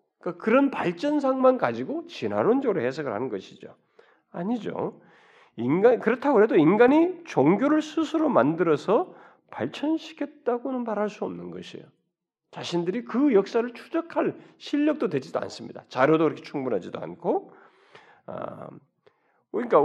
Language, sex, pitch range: Korean, male, 235-320 Hz